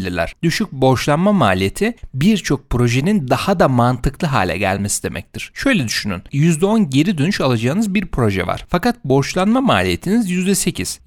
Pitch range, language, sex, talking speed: 120-195 Hz, Turkish, male, 130 wpm